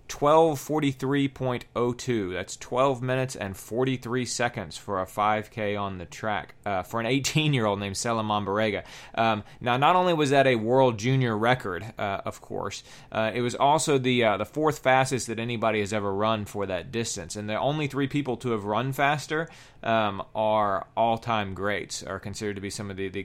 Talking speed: 180 wpm